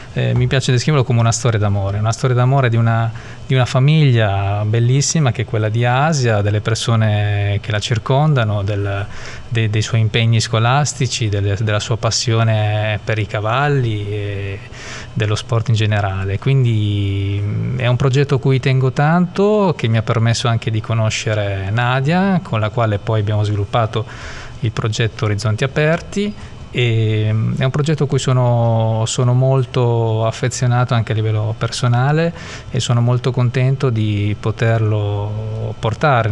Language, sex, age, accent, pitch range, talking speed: Italian, male, 20-39, native, 110-130 Hz, 145 wpm